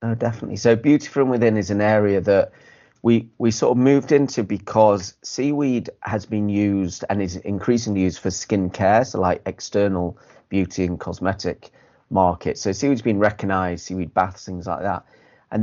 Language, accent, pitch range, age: English, British, 90-110 Hz, 30-49